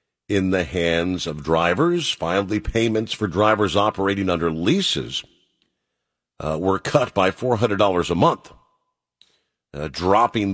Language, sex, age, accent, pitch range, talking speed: English, male, 50-69, American, 85-115 Hz, 120 wpm